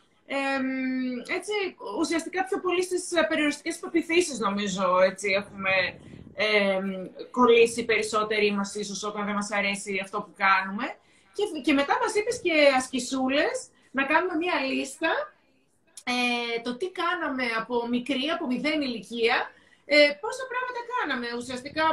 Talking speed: 120 wpm